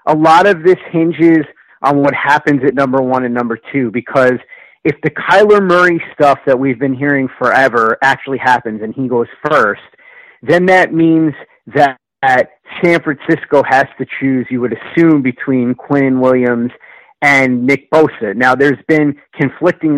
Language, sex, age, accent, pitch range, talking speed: English, male, 30-49, American, 130-155 Hz, 165 wpm